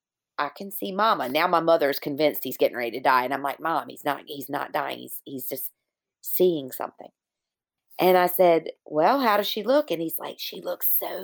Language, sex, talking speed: English, female, 220 wpm